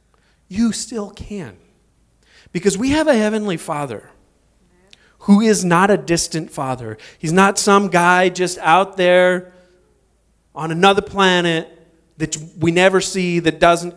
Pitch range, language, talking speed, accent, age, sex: 130-180 Hz, English, 135 wpm, American, 30-49, male